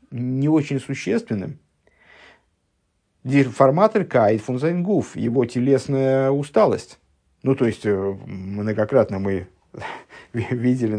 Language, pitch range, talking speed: English, 100-130 Hz, 80 wpm